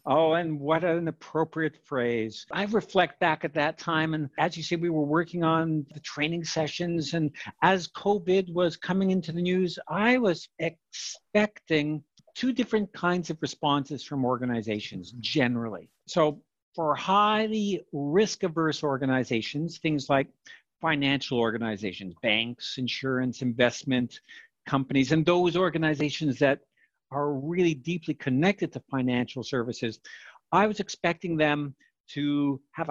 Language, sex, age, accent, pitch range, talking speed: English, male, 60-79, American, 135-180 Hz, 130 wpm